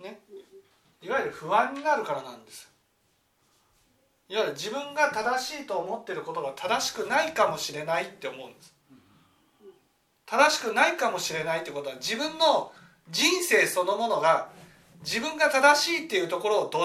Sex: male